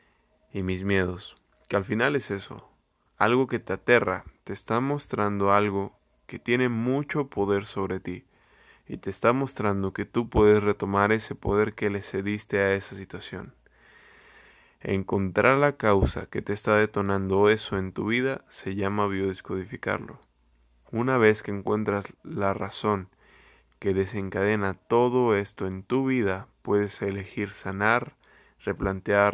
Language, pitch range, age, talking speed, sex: Spanish, 95-115 Hz, 20-39, 140 wpm, male